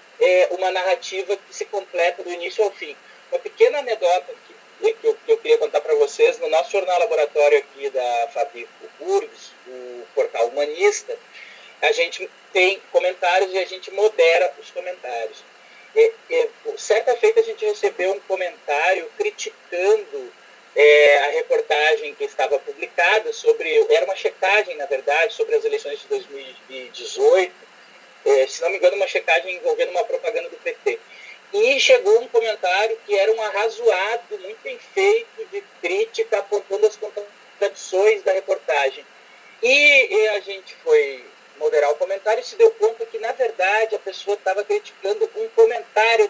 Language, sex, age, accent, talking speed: Portuguese, male, 30-49, Brazilian, 155 wpm